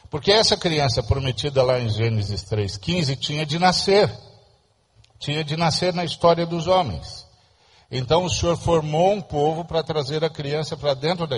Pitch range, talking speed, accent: 115-165 Hz, 165 wpm, Brazilian